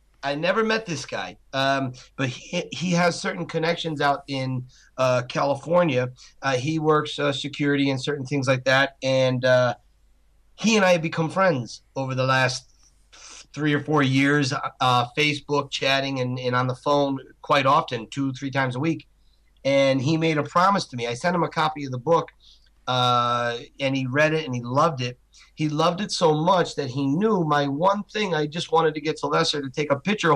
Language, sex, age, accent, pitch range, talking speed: English, male, 40-59, American, 130-160 Hz, 200 wpm